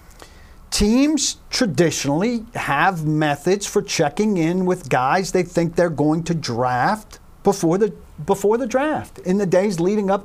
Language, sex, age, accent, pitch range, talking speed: English, male, 50-69, American, 150-195 Hz, 140 wpm